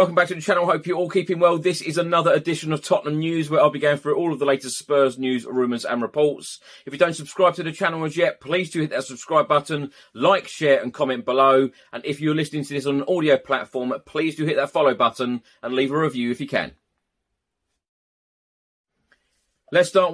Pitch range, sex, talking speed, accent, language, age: 135-165 Hz, male, 225 wpm, British, English, 30-49